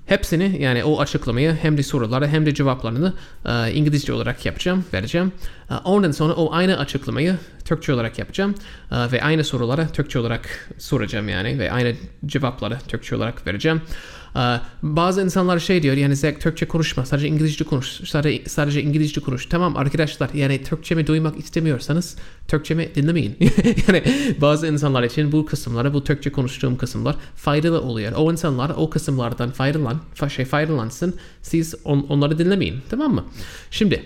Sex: male